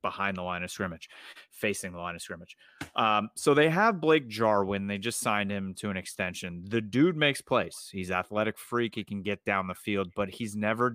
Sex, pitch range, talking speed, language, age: male, 100-115 Hz, 215 wpm, English, 30-49